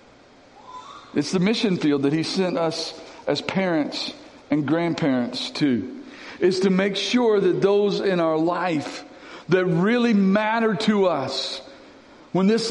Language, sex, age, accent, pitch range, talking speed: English, male, 50-69, American, 175-230 Hz, 135 wpm